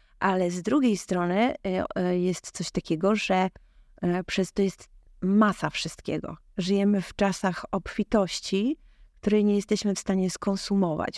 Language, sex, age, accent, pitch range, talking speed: Polish, female, 30-49, native, 170-205 Hz, 125 wpm